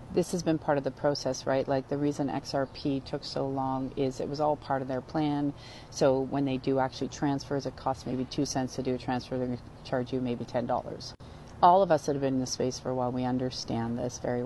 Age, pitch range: 40-59, 125-145 Hz